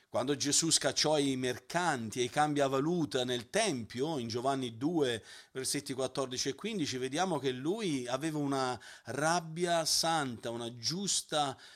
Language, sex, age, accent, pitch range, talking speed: Italian, male, 40-59, native, 125-160 Hz, 135 wpm